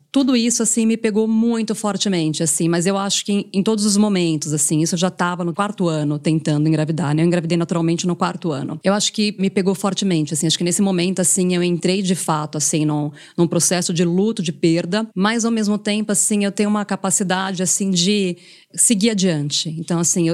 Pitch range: 170-205 Hz